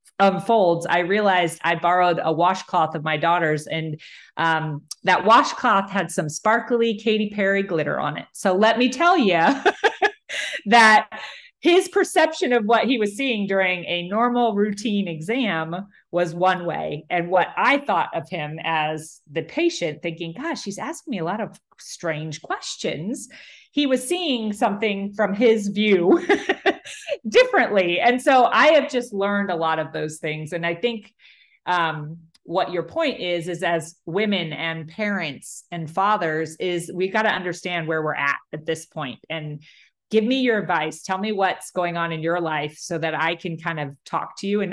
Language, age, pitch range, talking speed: English, 30-49, 165-230 Hz, 175 wpm